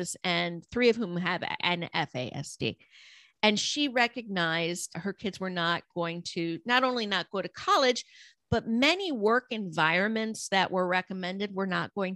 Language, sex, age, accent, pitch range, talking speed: English, female, 50-69, American, 170-210 Hz, 160 wpm